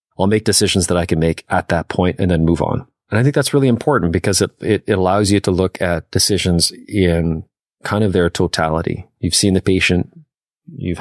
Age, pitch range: 30-49, 85-100 Hz